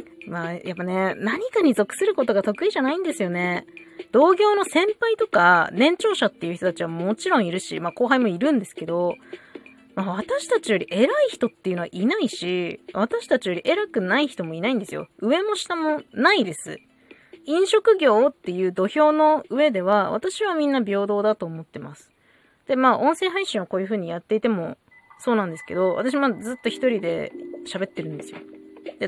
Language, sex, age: Japanese, female, 20-39